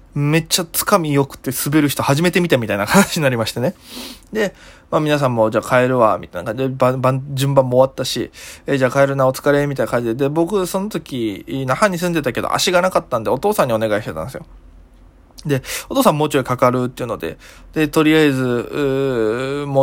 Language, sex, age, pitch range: Japanese, male, 20-39, 120-155 Hz